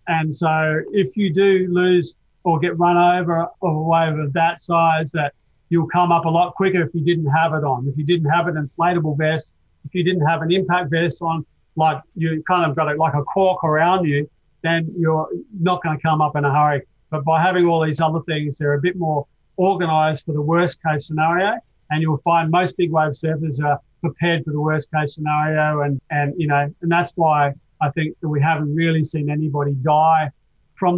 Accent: Australian